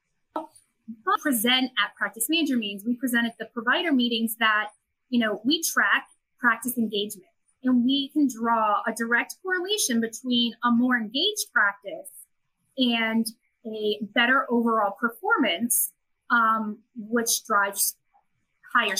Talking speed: 125 wpm